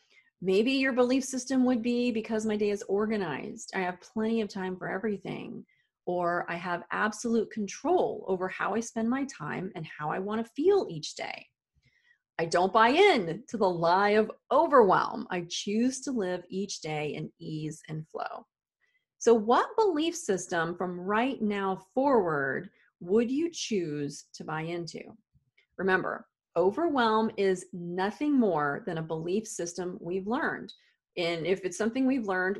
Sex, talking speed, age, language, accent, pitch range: female, 160 wpm, 30-49, English, American, 180-235 Hz